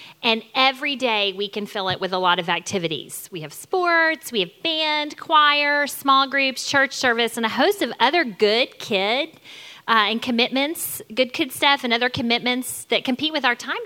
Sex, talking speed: female, 190 wpm